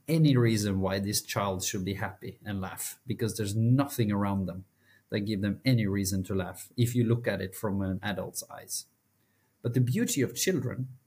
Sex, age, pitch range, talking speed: male, 30-49, 100-125 Hz, 195 wpm